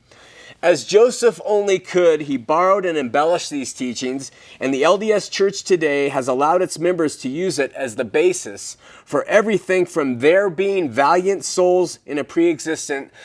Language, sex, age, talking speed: English, male, 30-49, 160 wpm